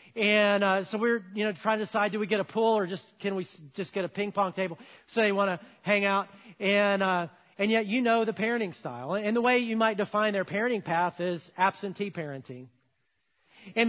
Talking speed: 225 wpm